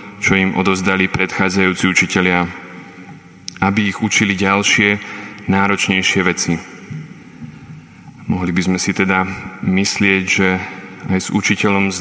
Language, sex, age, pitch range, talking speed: Slovak, male, 20-39, 95-105 Hz, 110 wpm